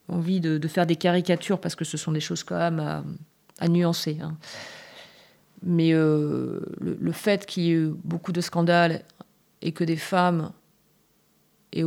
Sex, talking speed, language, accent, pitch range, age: female, 175 wpm, French, French, 155-175 Hz, 30-49